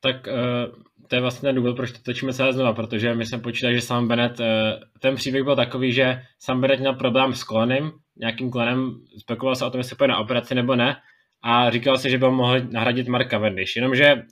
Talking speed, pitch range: 215 wpm, 115-130 Hz